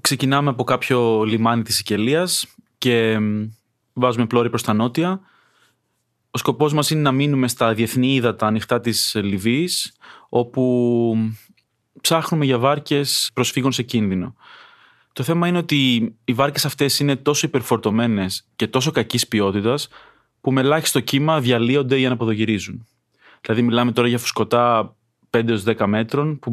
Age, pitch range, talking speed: 30-49, 115-140 Hz, 140 wpm